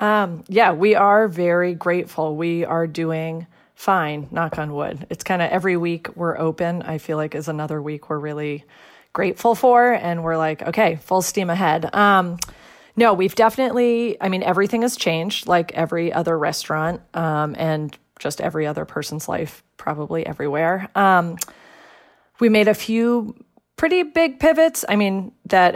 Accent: American